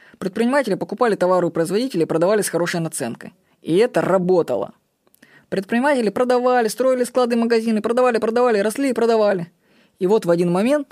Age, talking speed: 20-39, 155 wpm